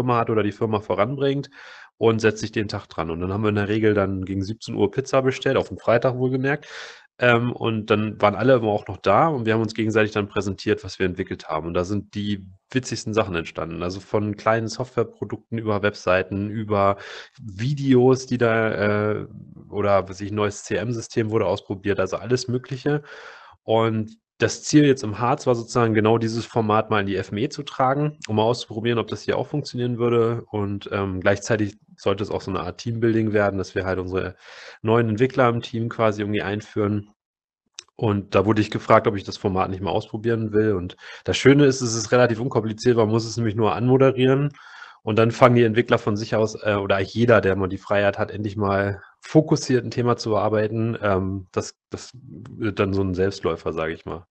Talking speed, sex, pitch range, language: 205 wpm, male, 100-120 Hz, German